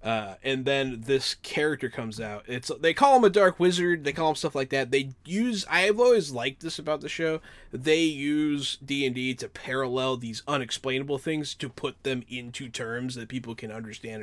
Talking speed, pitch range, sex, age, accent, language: 195 wpm, 120-175 Hz, male, 20-39, American, English